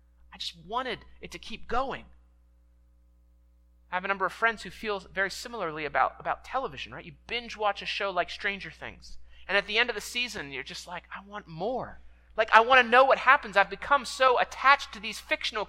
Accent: American